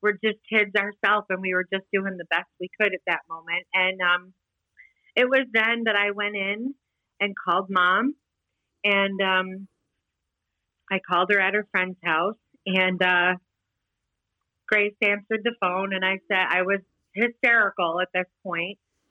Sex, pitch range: female, 180-205 Hz